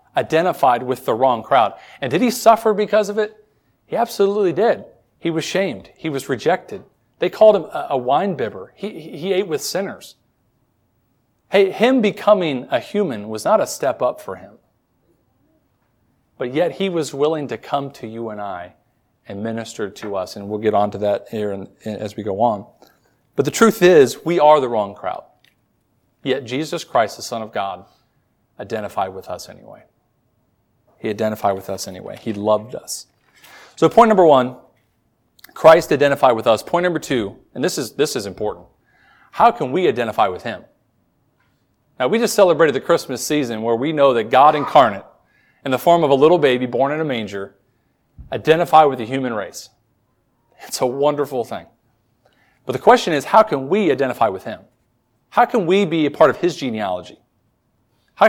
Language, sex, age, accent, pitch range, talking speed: English, male, 40-59, American, 115-180 Hz, 180 wpm